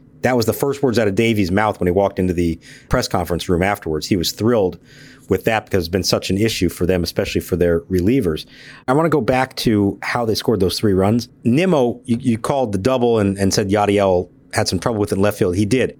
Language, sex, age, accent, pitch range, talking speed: English, male, 50-69, American, 95-130 Hz, 240 wpm